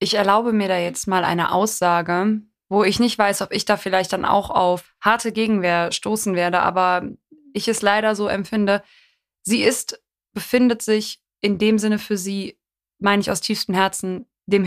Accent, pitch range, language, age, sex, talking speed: German, 190-220 Hz, German, 20-39, female, 180 wpm